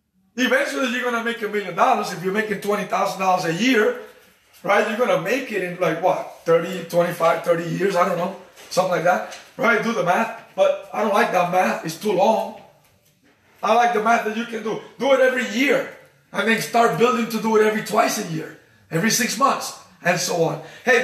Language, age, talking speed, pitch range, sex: English, 30-49, 220 wpm, 205-265 Hz, male